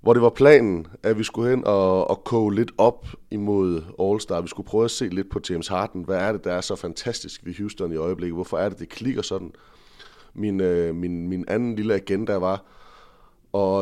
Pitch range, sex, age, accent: 85-105 Hz, male, 30-49, Danish